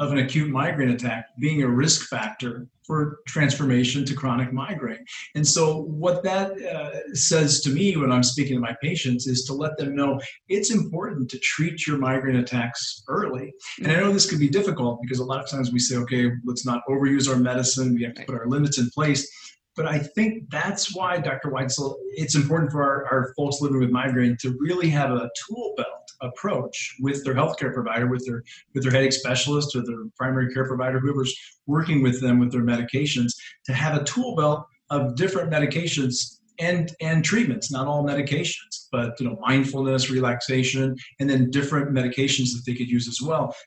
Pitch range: 125-155 Hz